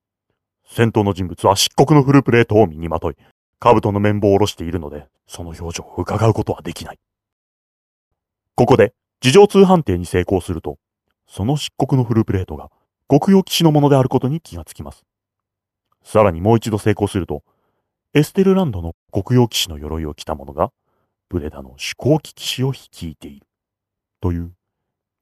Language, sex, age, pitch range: Japanese, male, 30-49, 90-125 Hz